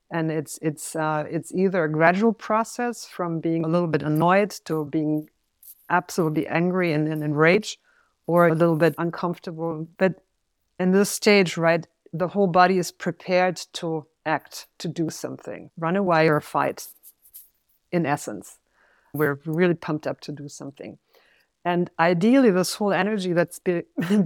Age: 50-69